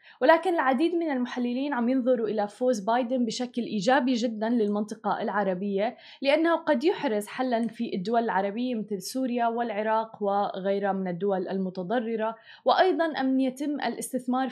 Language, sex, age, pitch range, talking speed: Arabic, female, 20-39, 210-260 Hz, 130 wpm